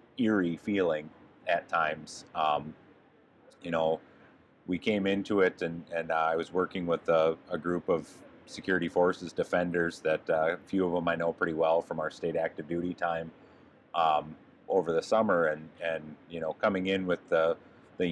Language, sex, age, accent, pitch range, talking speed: English, male, 30-49, American, 80-95 Hz, 180 wpm